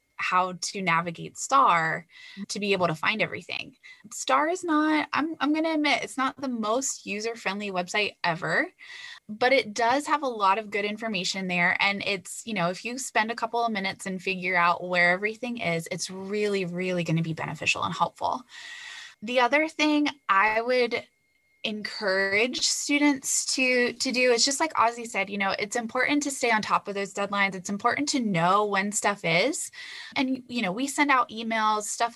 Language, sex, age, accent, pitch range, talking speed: English, female, 10-29, American, 195-260 Hz, 190 wpm